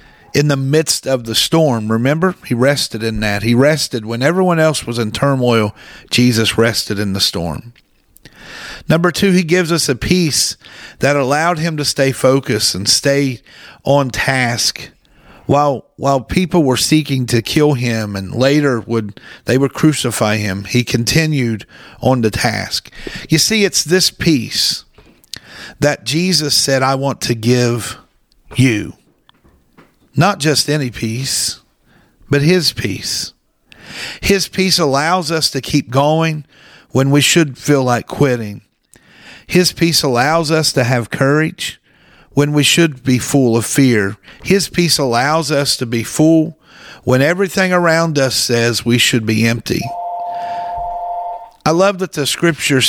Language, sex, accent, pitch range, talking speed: English, male, American, 120-160 Hz, 145 wpm